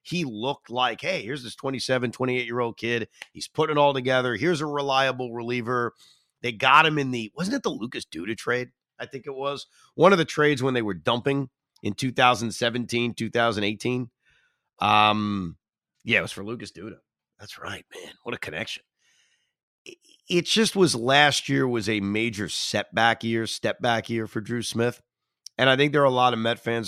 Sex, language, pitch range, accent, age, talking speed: male, English, 110-145 Hz, American, 30-49, 185 wpm